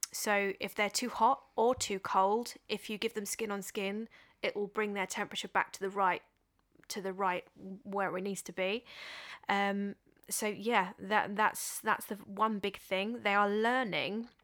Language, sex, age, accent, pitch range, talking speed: English, female, 20-39, British, 190-225 Hz, 185 wpm